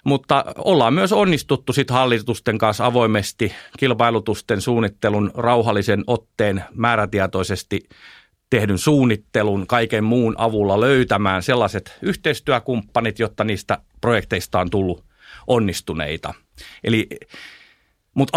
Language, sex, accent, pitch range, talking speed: Finnish, male, native, 100-125 Hz, 90 wpm